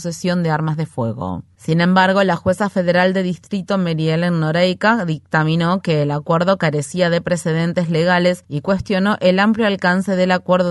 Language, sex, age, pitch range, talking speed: Spanish, female, 30-49, 165-185 Hz, 170 wpm